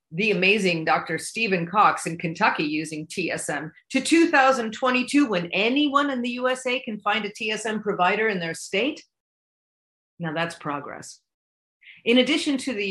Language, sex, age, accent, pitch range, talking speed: English, female, 40-59, American, 150-210 Hz, 145 wpm